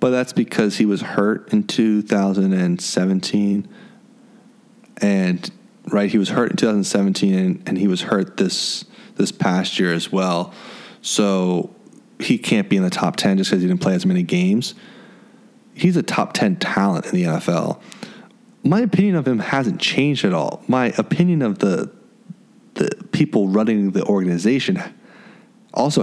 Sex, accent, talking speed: male, American, 155 wpm